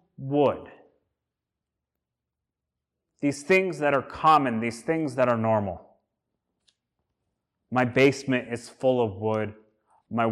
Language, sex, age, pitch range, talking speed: English, male, 30-49, 120-170 Hz, 105 wpm